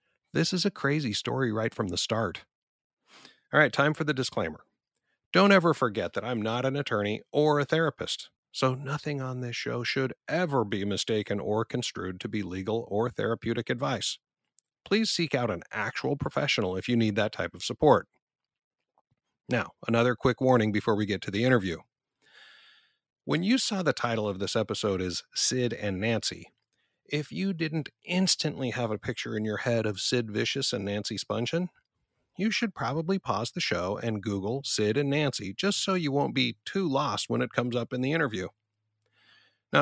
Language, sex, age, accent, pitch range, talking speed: English, male, 50-69, American, 105-145 Hz, 180 wpm